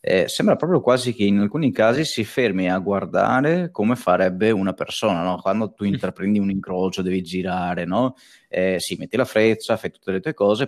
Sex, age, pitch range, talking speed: male, 20-39, 95-115 Hz, 200 wpm